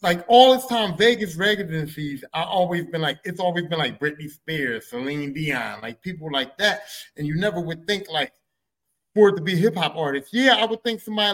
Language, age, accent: English, 30-49, American